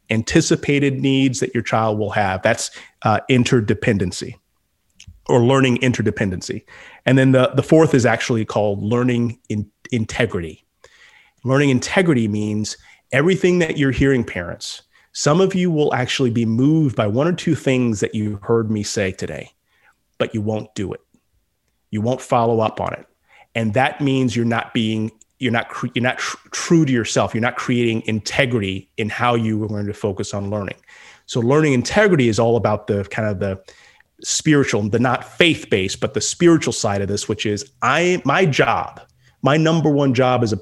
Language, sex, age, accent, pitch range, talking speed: English, male, 30-49, American, 105-135 Hz, 175 wpm